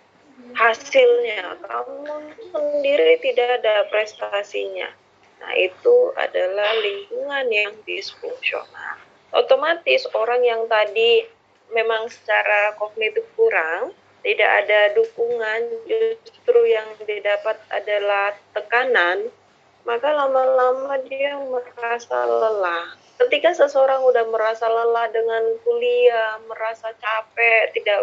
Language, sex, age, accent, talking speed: Indonesian, female, 20-39, native, 90 wpm